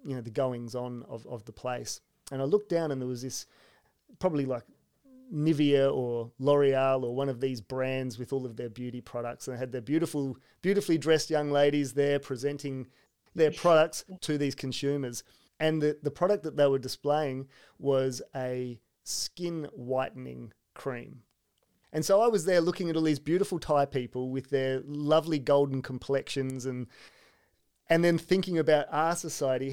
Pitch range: 130-155 Hz